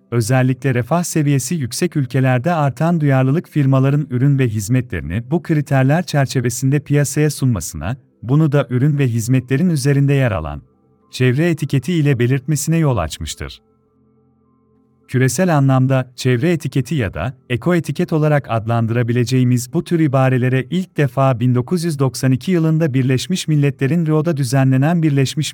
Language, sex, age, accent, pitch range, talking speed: Turkish, male, 40-59, native, 125-150 Hz, 120 wpm